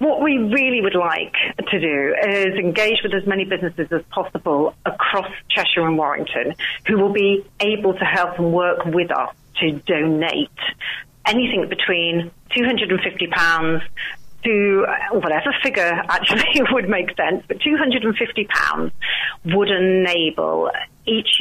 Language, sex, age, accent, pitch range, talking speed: English, female, 40-59, British, 155-190 Hz, 130 wpm